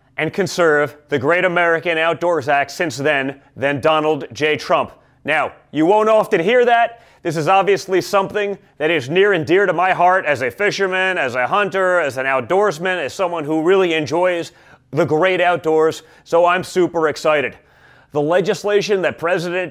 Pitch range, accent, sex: 150-190 Hz, American, male